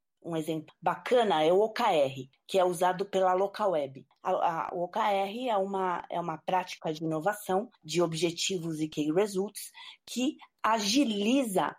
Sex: female